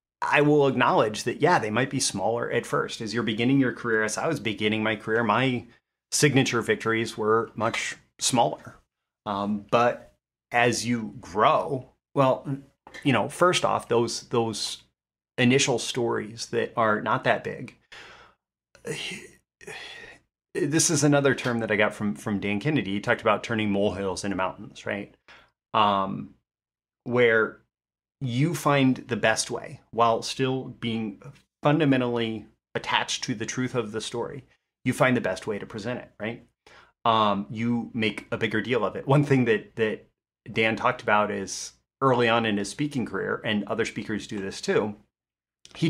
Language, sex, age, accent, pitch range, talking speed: English, male, 30-49, American, 105-130 Hz, 160 wpm